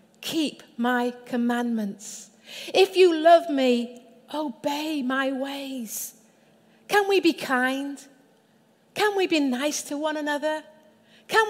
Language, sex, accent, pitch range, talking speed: English, female, British, 225-300 Hz, 115 wpm